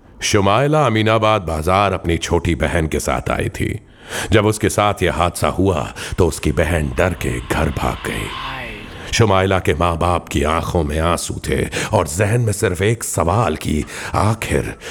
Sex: male